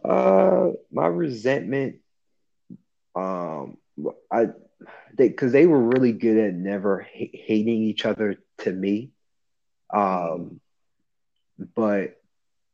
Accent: American